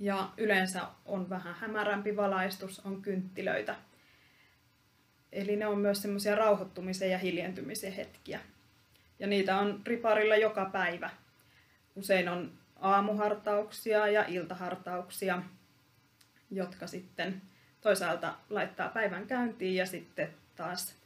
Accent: native